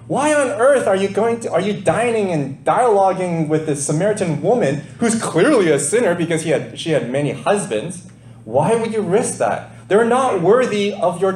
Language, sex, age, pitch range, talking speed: English, male, 30-49, 125-205 Hz, 195 wpm